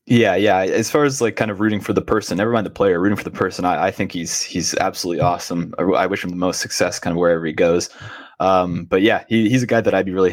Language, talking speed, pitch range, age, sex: English, 290 wpm, 90-110 Hz, 20-39, male